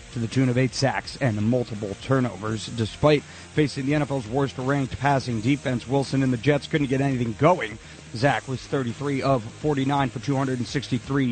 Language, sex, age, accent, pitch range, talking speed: English, male, 30-49, American, 125-150 Hz, 165 wpm